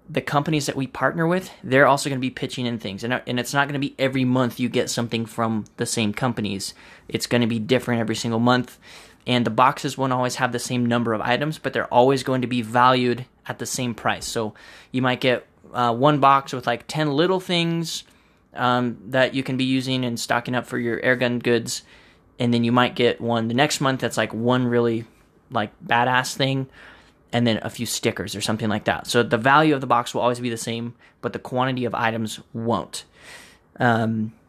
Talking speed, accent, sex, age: 220 wpm, American, male, 10-29